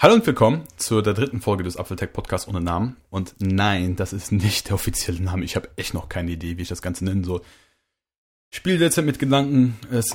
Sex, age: male, 30-49